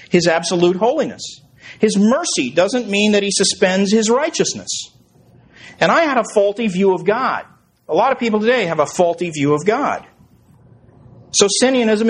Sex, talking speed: male, 165 wpm